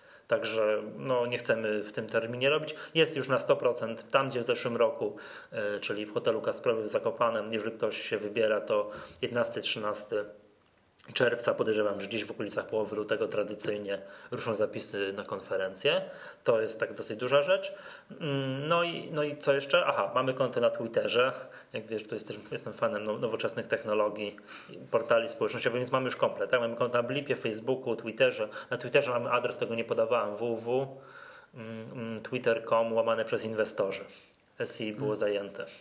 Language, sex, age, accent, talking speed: Polish, male, 20-39, native, 165 wpm